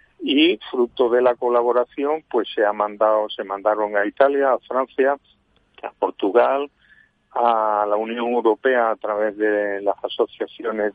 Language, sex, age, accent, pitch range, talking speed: Spanish, male, 40-59, Spanish, 105-135 Hz, 140 wpm